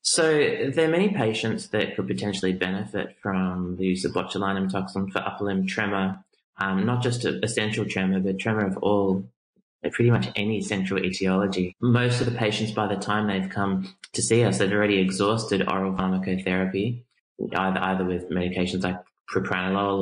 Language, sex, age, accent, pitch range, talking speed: English, male, 20-39, Australian, 95-105 Hz, 170 wpm